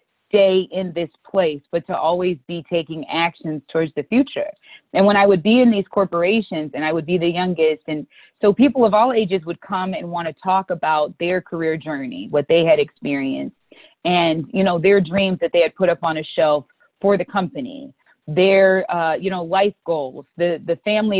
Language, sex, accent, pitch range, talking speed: English, female, American, 170-225 Hz, 205 wpm